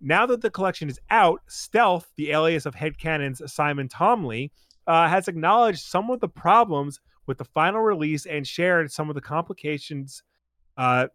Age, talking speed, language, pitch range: 30-49, 165 wpm, English, 130-175 Hz